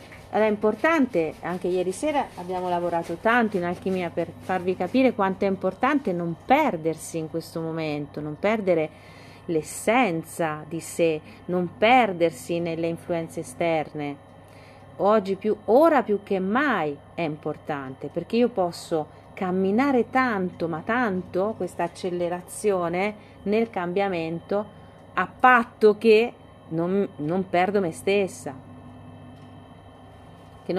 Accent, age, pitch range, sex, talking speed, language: native, 40-59, 165-210 Hz, female, 115 wpm, Italian